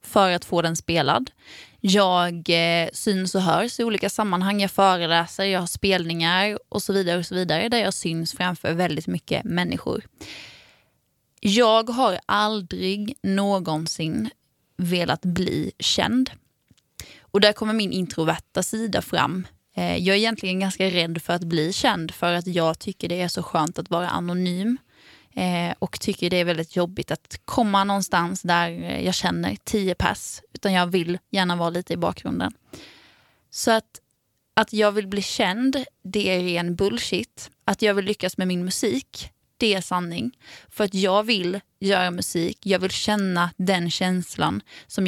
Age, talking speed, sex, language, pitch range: 20-39, 160 wpm, female, Swedish, 170-200 Hz